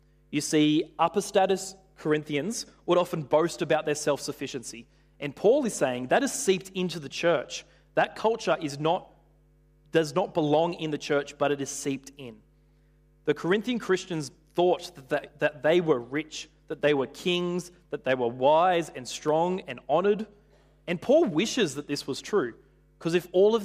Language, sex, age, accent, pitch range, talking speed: English, male, 20-39, Australian, 140-175 Hz, 165 wpm